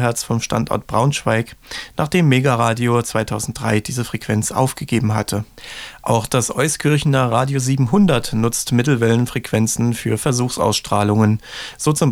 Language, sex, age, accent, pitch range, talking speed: German, male, 30-49, German, 115-140 Hz, 105 wpm